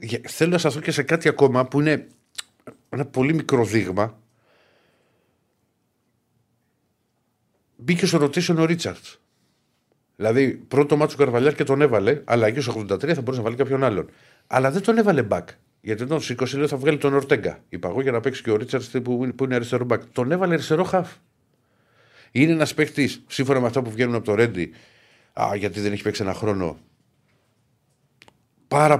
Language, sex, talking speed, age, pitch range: Greek, male, 170 wpm, 50-69, 110-140 Hz